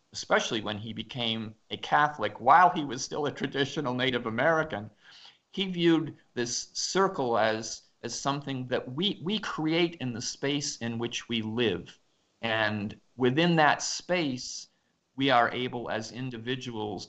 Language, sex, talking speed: English, male, 145 wpm